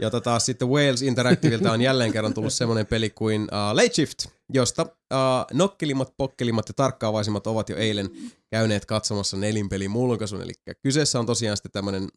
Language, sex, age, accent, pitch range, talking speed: Finnish, male, 30-49, native, 105-130 Hz, 170 wpm